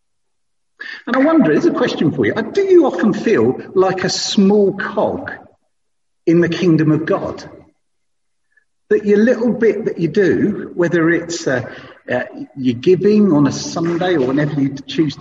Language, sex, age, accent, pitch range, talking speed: English, male, 50-69, British, 160-220 Hz, 160 wpm